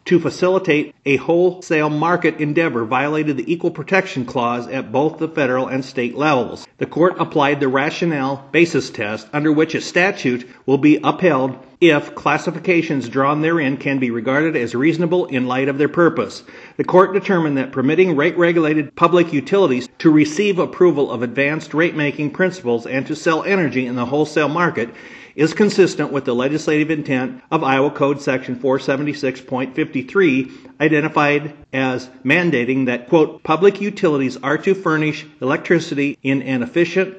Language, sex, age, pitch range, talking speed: English, male, 50-69, 135-170 Hz, 150 wpm